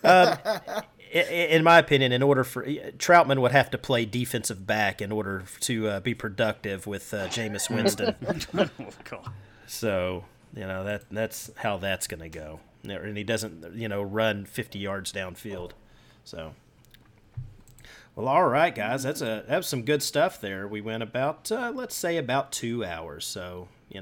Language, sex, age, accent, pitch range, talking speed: English, male, 30-49, American, 100-120 Hz, 165 wpm